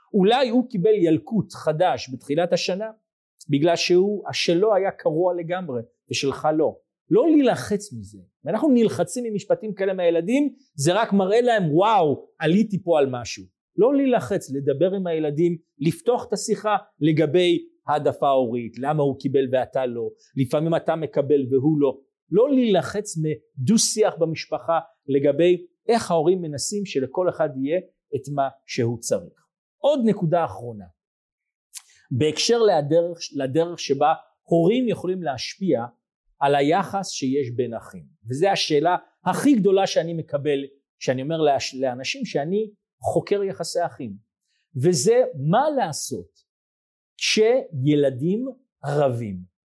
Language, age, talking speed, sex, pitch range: Hebrew, 40-59, 125 wpm, male, 145-205 Hz